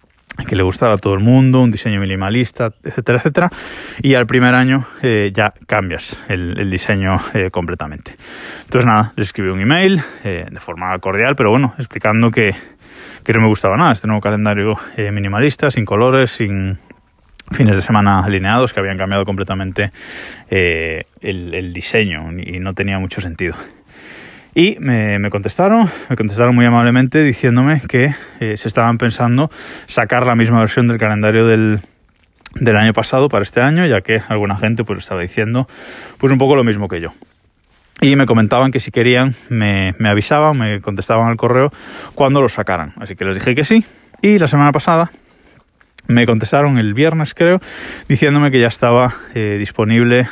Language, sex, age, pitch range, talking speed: Spanish, male, 20-39, 95-125 Hz, 175 wpm